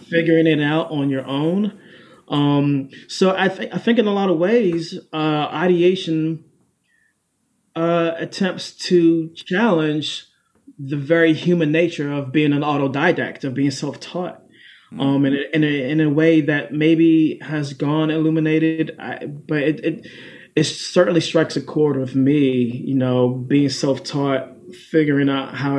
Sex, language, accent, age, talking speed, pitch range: male, English, American, 20-39, 150 wpm, 130-155 Hz